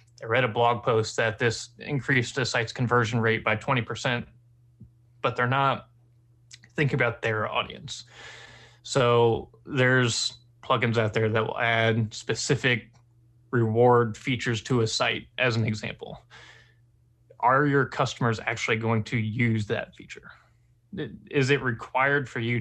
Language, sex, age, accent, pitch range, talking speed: English, male, 20-39, American, 115-125 Hz, 140 wpm